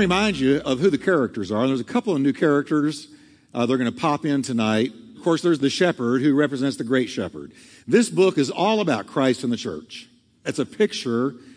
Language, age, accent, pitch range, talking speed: English, 50-69, American, 135-205 Hz, 220 wpm